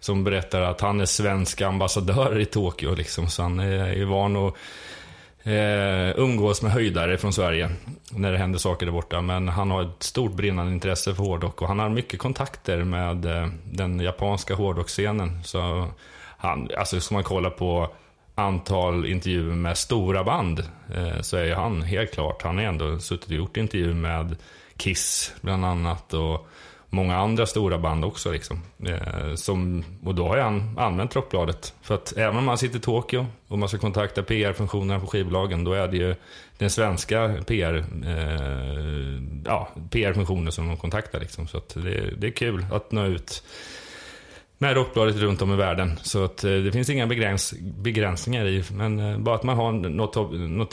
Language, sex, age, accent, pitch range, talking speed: Swedish, male, 30-49, native, 85-105 Hz, 185 wpm